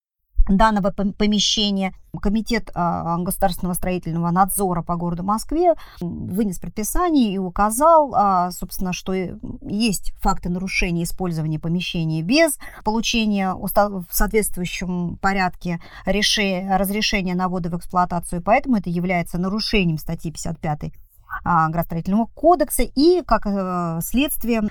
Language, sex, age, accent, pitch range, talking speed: Russian, male, 40-59, native, 175-230 Hz, 100 wpm